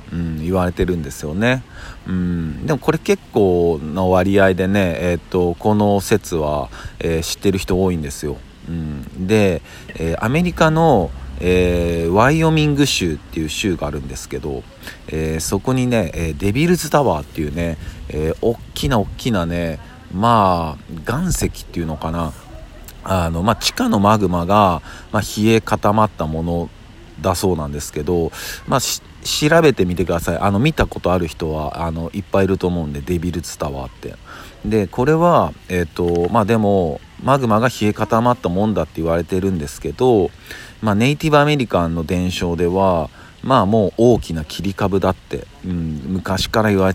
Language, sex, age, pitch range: Japanese, male, 50-69, 85-105 Hz